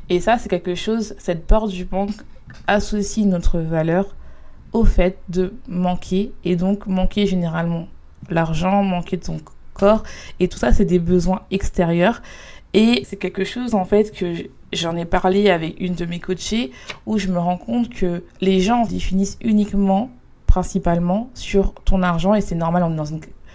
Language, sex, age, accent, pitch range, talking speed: French, female, 20-39, French, 175-200 Hz, 175 wpm